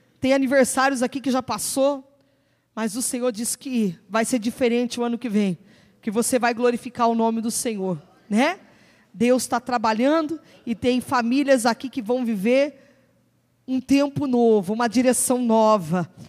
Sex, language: female, Portuguese